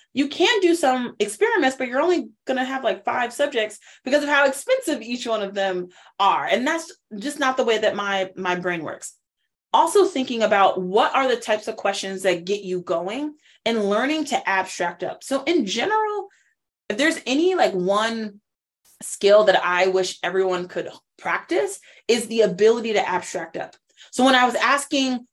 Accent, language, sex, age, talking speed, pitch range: American, English, female, 20-39, 185 wpm, 195-275 Hz